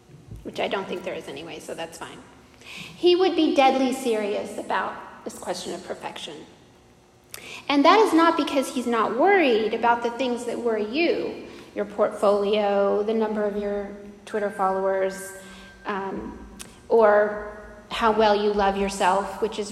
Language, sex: English, female